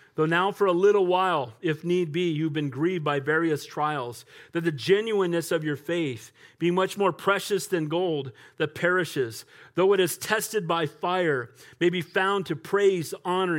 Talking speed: 180 wpm